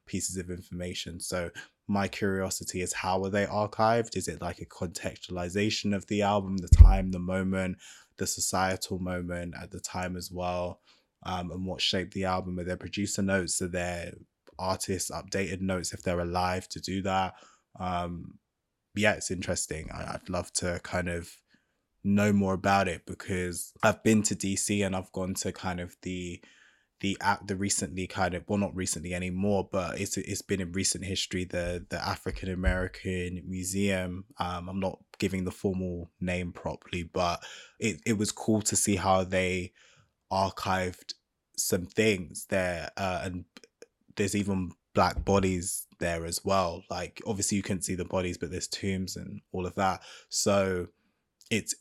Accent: British